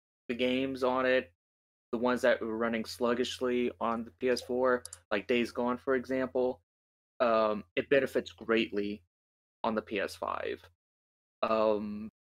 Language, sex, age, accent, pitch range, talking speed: English, male, 20-39, American, 90-120 Hz, 120 wpm